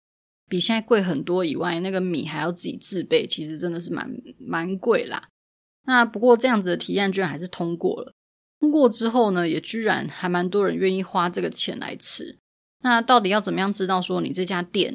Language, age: Chinese, 20-39